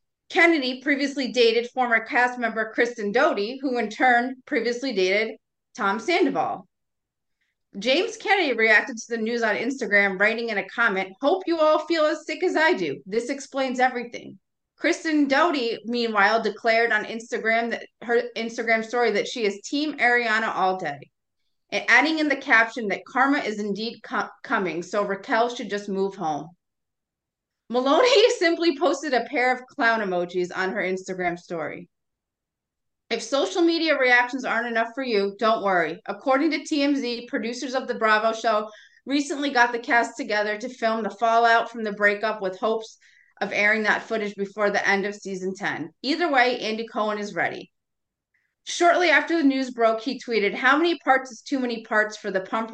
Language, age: English, 30-49